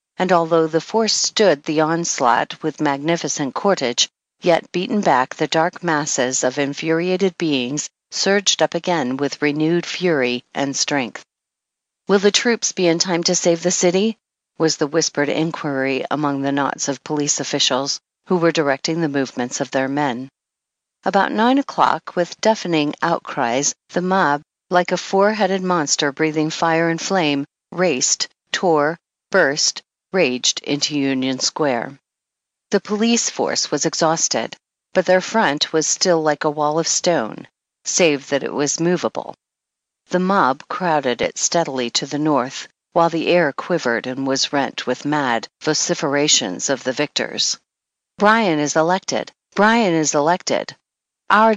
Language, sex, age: English, female, 50-69